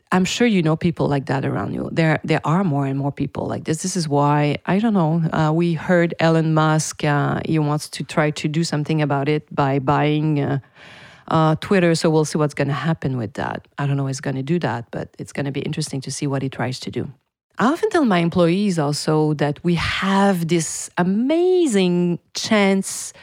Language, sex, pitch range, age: English, female, 145-175 Hz, 40-59